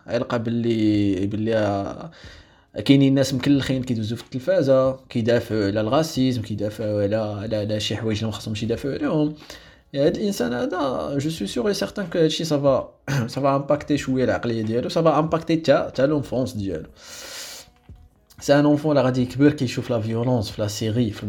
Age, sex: 20-39, male